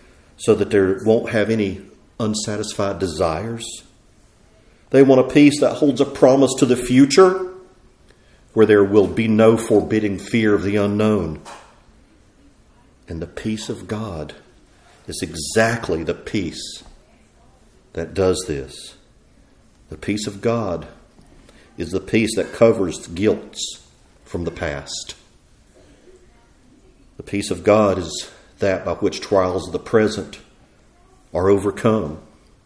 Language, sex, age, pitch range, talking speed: English, male, 50-69, 95-115 Hz, 125 wpm